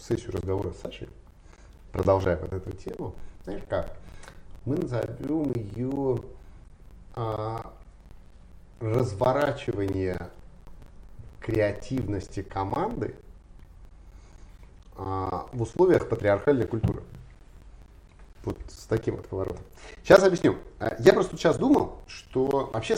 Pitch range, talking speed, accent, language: 90-120 Hz, 90 wpm, native, Russian